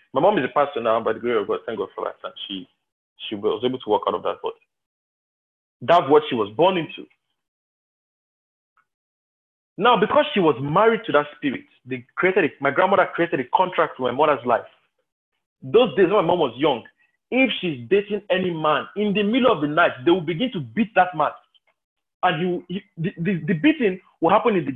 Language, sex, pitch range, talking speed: English, male, 150-235 Hz, 215 wpm